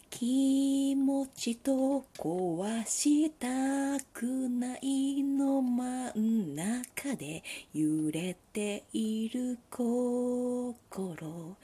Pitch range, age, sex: 215-290 Hz, 40-59, female